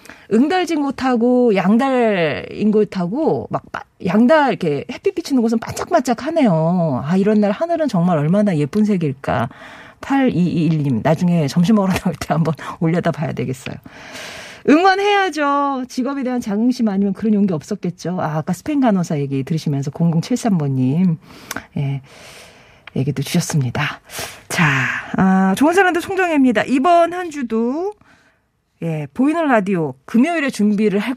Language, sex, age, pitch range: Korean, female, 40-59, 170-260 Hz